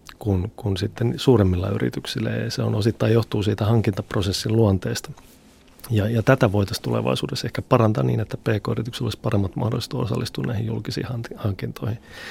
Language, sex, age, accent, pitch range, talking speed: Finnish, male, 30-49, native, 100-115 Hz, 145 wpm